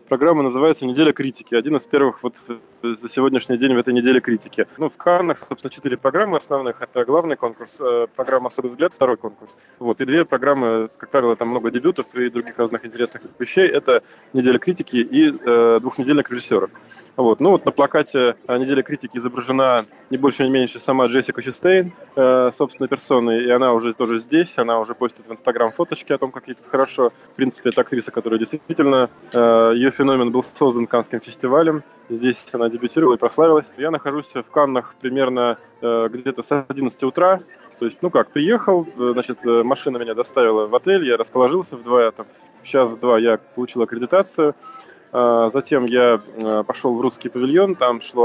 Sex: male